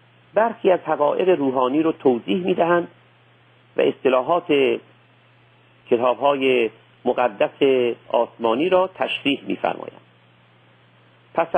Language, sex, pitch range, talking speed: Persian, male, 120-160 Hz, 100 wpm